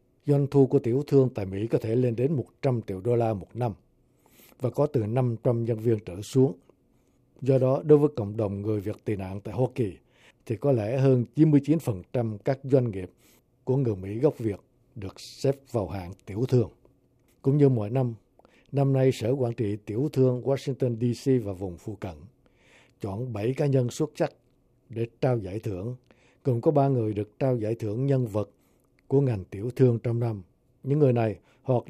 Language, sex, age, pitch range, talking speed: Vietnamese, male, 60-79, 110-135 Hz, 195 wpm